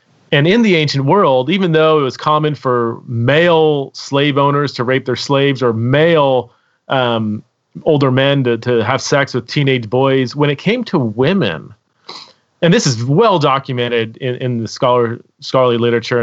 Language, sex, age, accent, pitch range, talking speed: English, male, 30-49, American, 115-145 Hz, 165 wpm